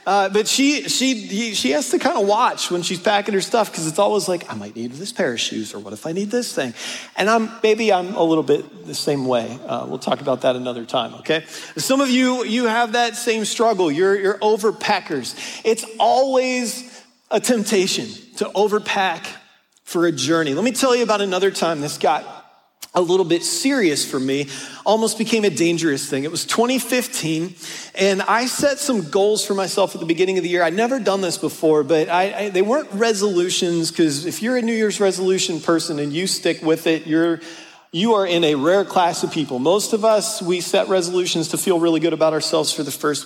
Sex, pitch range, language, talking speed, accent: male, 160-225 Hz, English, 210 wpm, American